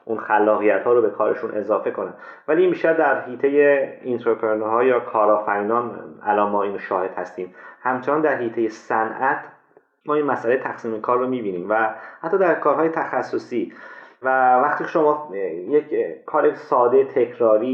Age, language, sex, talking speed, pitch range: 30-49, Persian, male, 150 wpm, 110-155 Hz